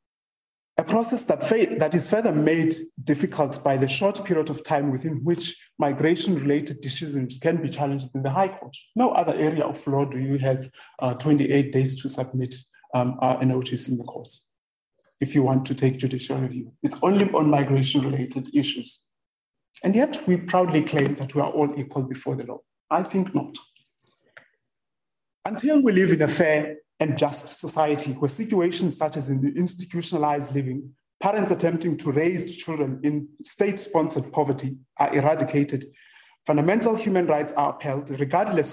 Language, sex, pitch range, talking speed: English, male, 140-175 Hz, 170 wpm